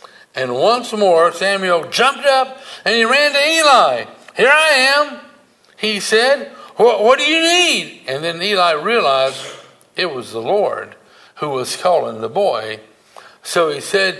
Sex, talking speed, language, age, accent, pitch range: male, 150 wpm, English, 60-79, American, 165-215 Hz